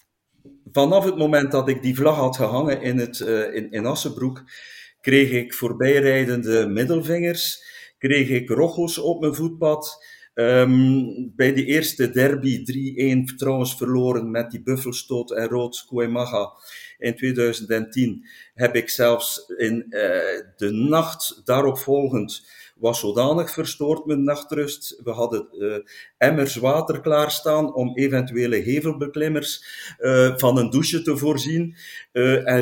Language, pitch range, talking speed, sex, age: Dutch, 125-150 Hz, 130 wpm, male, 50-69